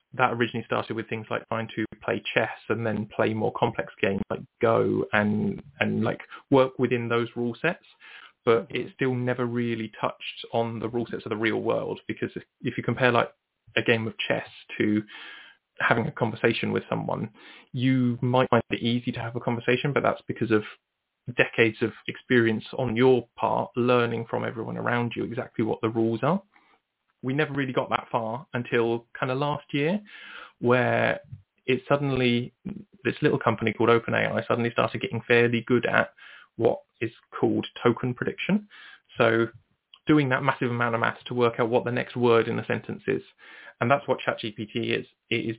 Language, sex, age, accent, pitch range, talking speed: English, male, 20-39, British, 115-130 Hz, 185 wpm